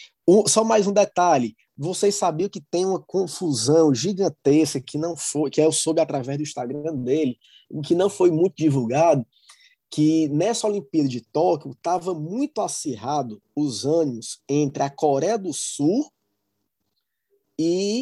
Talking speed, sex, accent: 145 wpm, male, Brazilian